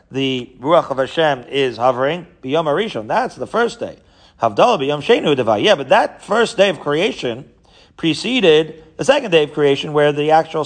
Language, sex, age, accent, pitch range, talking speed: English, male, 40-59, American, 130-155 Hz, 145 wpm